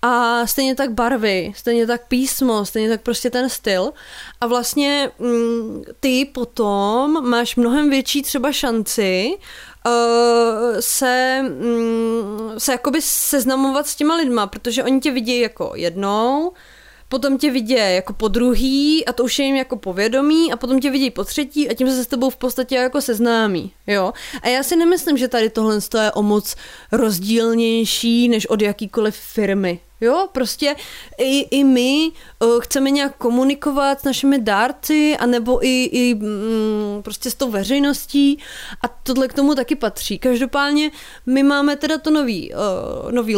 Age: 20-39